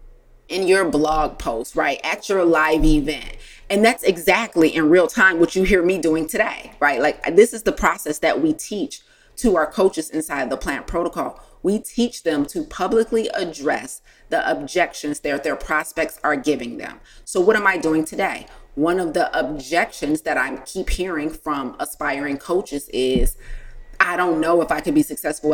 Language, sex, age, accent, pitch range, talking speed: English, female, 30-49, American, 160-225 Hz, 180 wpm